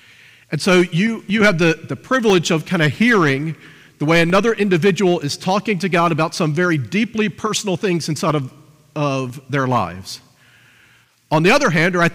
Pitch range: 155-195 Hz